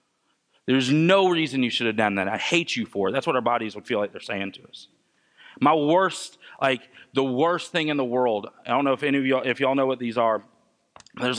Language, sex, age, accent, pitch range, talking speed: English, male, 30-49, American, 115-145 Hz, 250 wpm